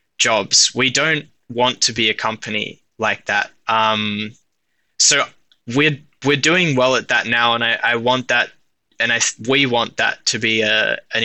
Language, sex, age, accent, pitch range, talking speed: English, male, 10-29, Australian, 110-125 Hz, 180 wpm